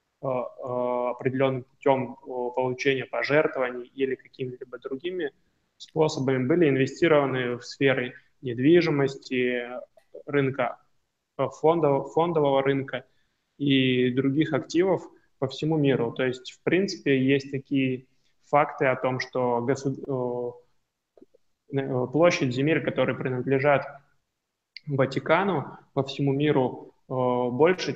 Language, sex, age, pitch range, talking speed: Russian, male, 20-39, 130-145 Hz, 90 wpm